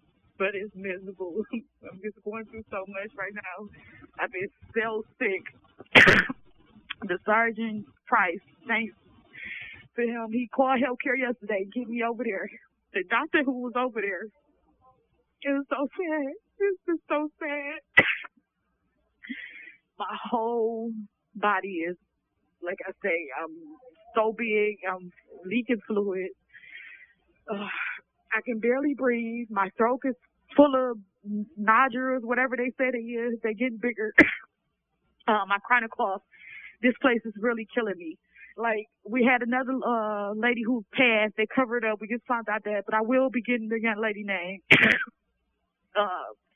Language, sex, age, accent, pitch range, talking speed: English, female, 20-39, American, 215-255 Hz, 140 wpm